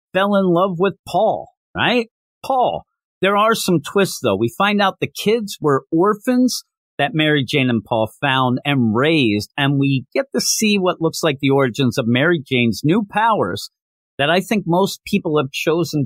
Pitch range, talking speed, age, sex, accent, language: 140-205 Hz, 185 wpm, 50-69, male, American, English